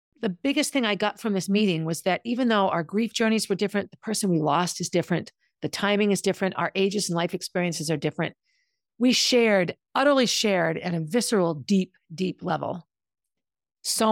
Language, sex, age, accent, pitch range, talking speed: English, female, 50-69, American, 170-225 Hz, 190 wpm